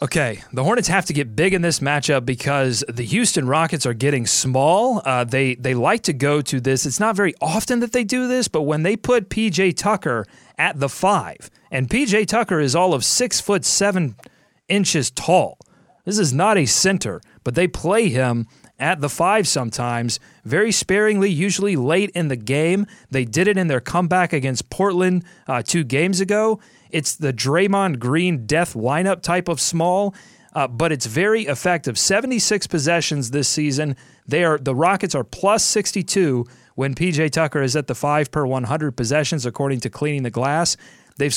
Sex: male